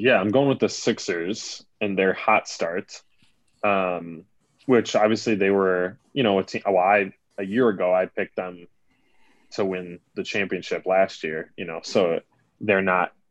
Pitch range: 90-100 Hz